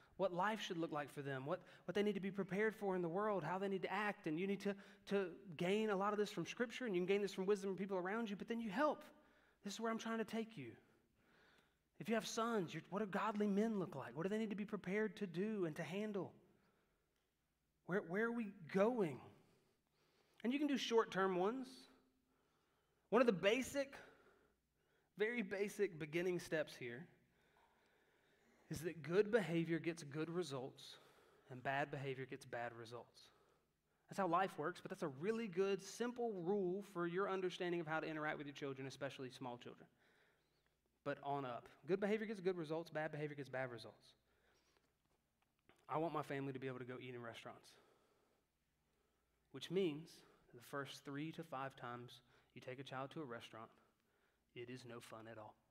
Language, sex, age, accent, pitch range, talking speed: English, male, 30-49, American, 140-205 Hz, 200 wpm